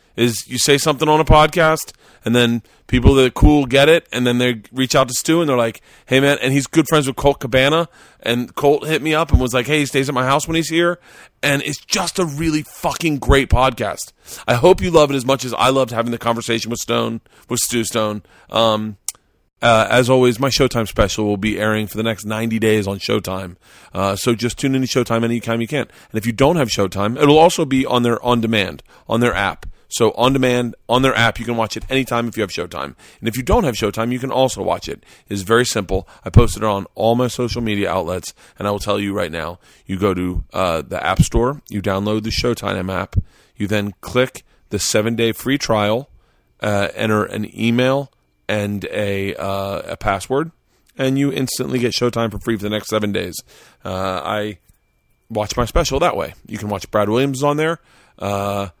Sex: male